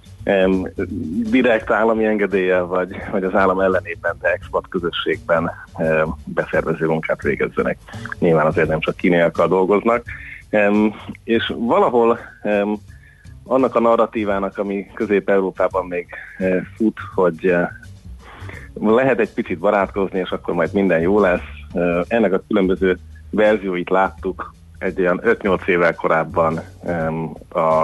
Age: 30-49